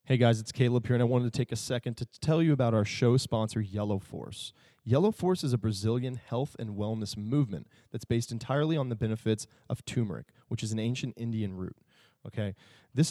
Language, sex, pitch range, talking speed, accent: English, male, 110-130 Hz, 210 wpm, American